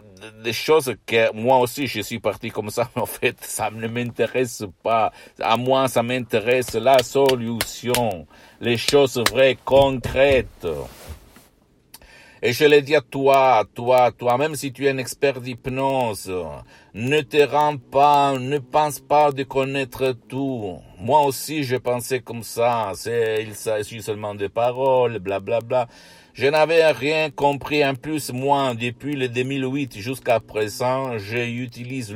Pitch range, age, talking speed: 115-140 Hz, 60-79, 150 wpm